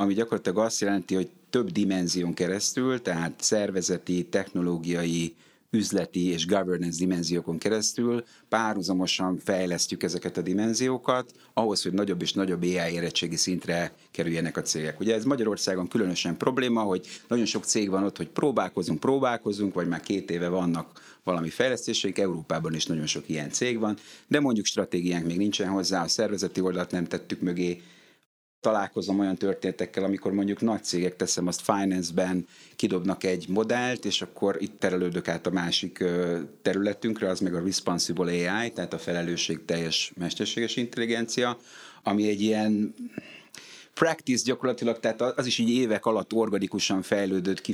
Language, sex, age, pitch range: Hungarian, male, 30-49, 90-110 Hz